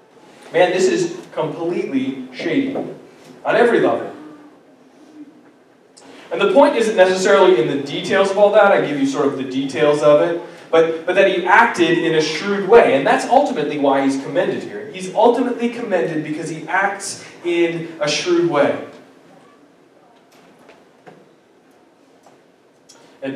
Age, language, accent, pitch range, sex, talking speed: 20-39, English, American, 155-205 Hz, male, 140 wpm